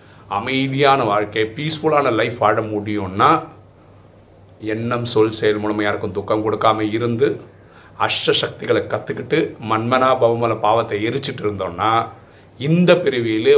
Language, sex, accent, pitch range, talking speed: Tamil, male, native, 105-140 Hz, 100 wpm